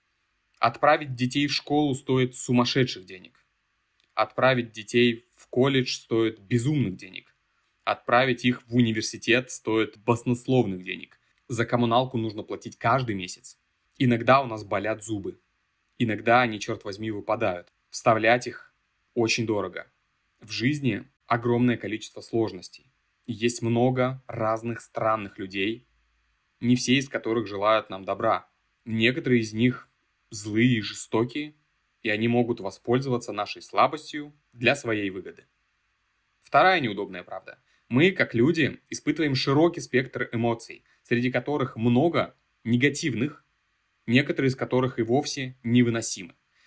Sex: male